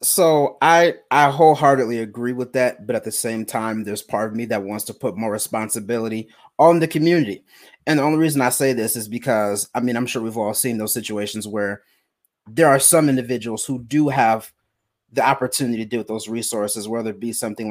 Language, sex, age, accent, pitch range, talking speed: English, male, 30-49, American, 110-135 Hz, 210 wpm